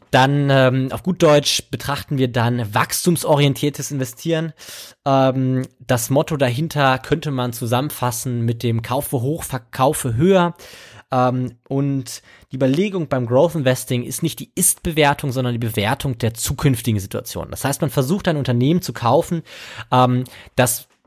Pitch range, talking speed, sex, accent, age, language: 125-150 Hz, 140 wpm, male, German, 20-39, German